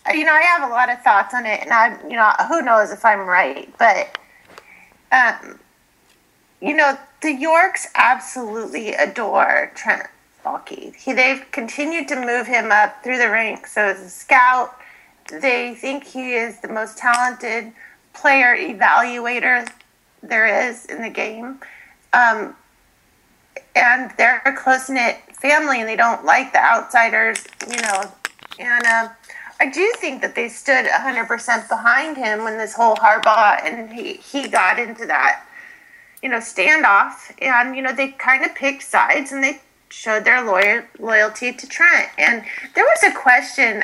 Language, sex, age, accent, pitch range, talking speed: English, female, 40-59, American, 225-270 Hz, 160 wpm